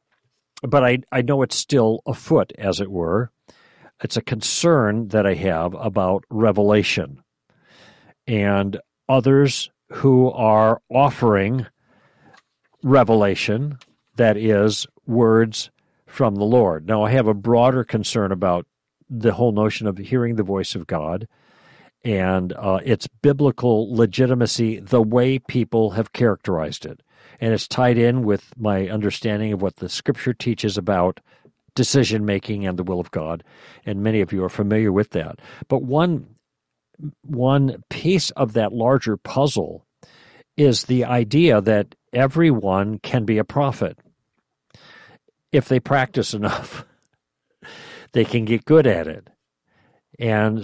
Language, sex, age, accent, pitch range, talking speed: English, male, 50-69, American, 105-130 Hz, 135 wpm